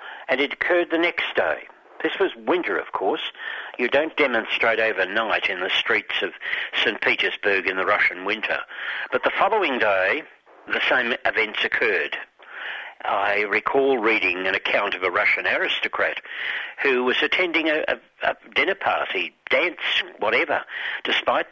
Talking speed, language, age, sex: 145 wpm, English, 60-79, male